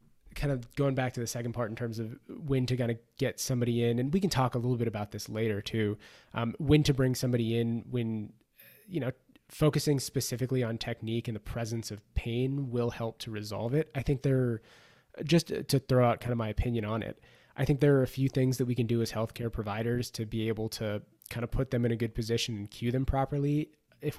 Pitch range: 115-130 Hz